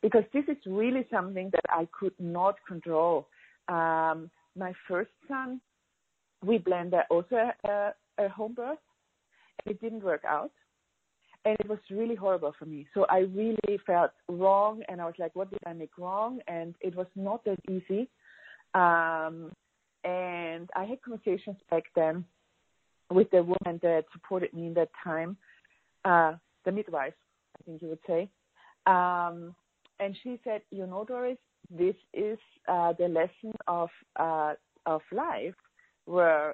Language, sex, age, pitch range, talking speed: English, female, 40-59, 165-210 Hz, 155 wpm